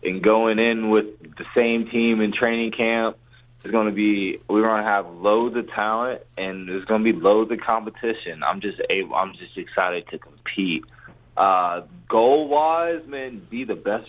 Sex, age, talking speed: male, 20-39, 185 wpm